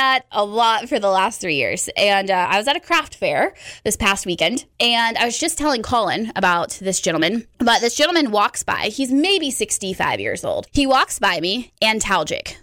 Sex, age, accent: female, 20-39, American